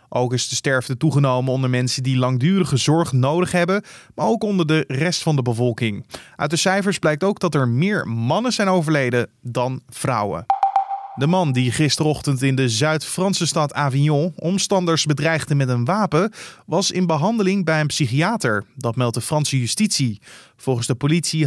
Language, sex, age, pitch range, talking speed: Dutch, male, 20-39, 130-175 Hz, 170 wpm